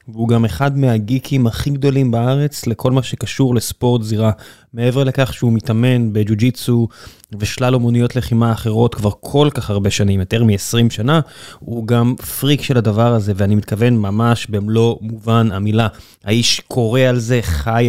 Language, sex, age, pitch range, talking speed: Hebrew, male, 20-39, 115-130 Hz, 155 wpm